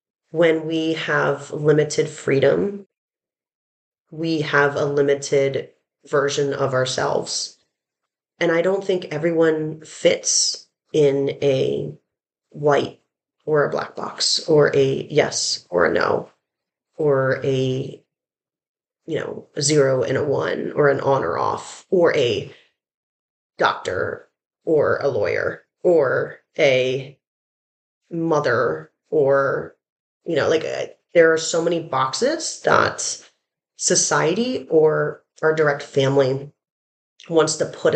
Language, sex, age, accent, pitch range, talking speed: English, female, 30-49, American, 145-185 Hz, 115 wpm